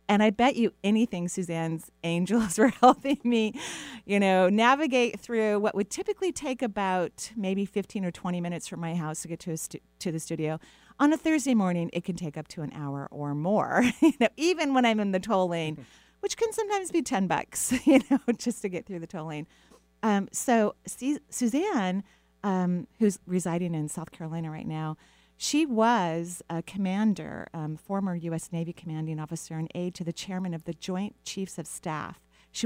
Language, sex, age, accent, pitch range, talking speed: English, female, 40-59, American, 165-225 Hz, 195 wpm